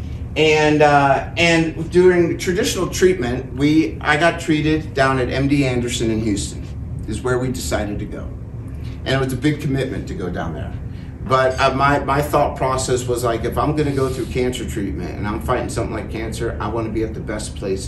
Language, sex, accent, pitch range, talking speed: English, male, American, 110-140 Hz, 210 wpm